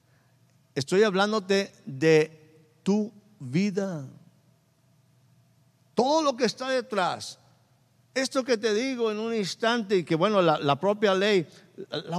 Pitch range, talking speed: 155-220 Hz, 125 wpm